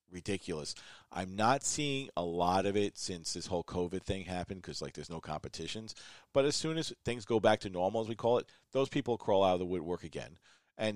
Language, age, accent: English, 40-59, American